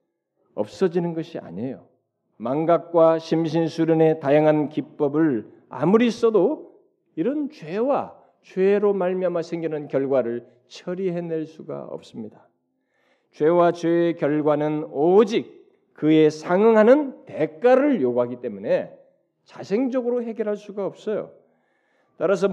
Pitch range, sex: 155-235 Hz, male